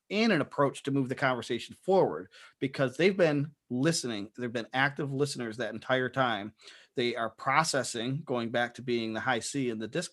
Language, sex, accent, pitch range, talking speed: English, male, American, 125-155 Hz, 190 wpm